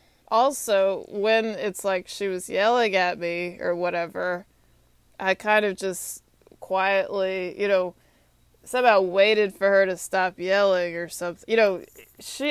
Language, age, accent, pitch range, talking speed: English, 20-39, American, 180-225 Hz, 145 wpm